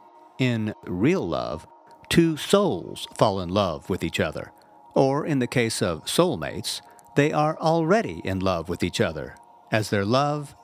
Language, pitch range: English, 110-145 Hz